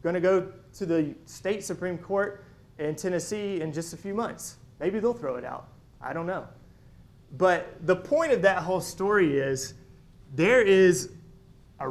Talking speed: 170 wpm